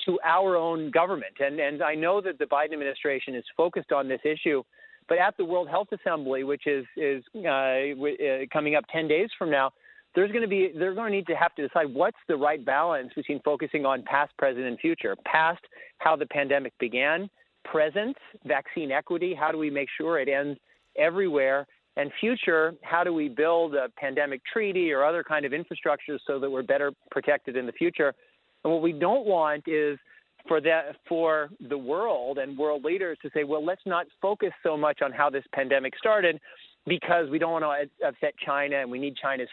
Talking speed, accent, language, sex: 200 wpm, American, English, male